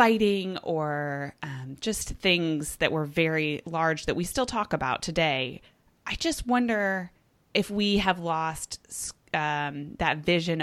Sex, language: female, English